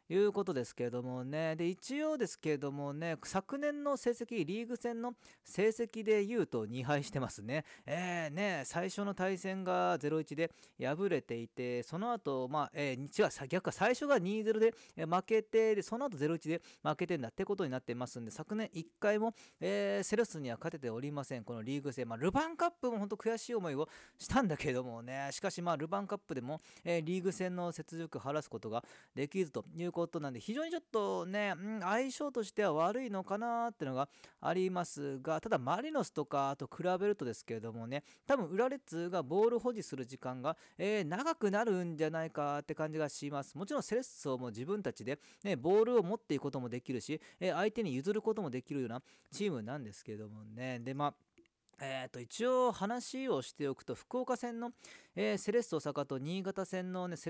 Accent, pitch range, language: native, 140-215 Hz, Japanese